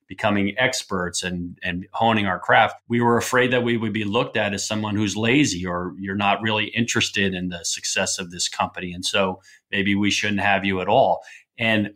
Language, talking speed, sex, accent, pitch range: English, 205 wpm, male, American, 95-120 Hz